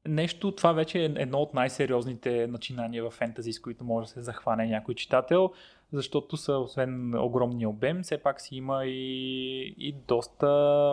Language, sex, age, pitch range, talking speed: Bulgarian, male, 20-39, 125-165 Hz, 165 wpm